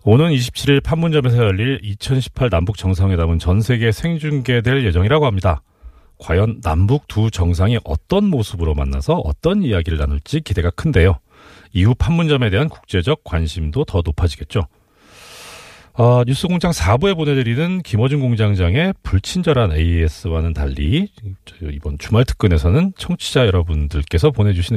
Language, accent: Korean, native